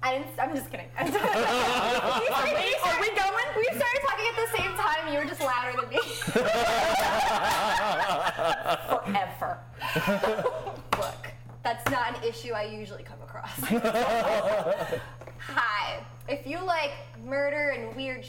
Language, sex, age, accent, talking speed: English, female, 20-39, American, 125 wpm